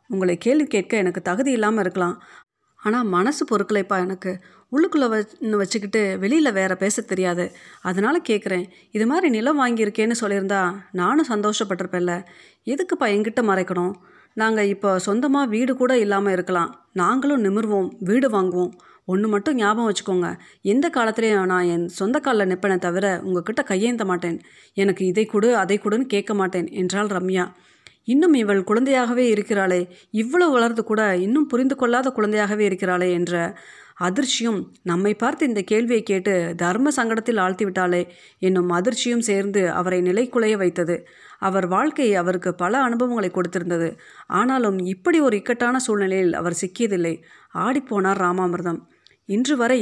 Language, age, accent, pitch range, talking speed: Tamil, 30-49, native, 185-235 Hz, 130 wpm